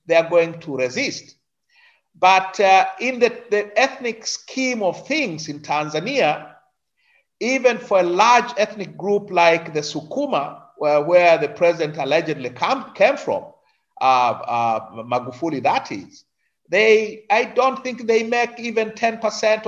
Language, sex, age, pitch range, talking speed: English, male, 50-69, 140-220 Hz, 135 wpm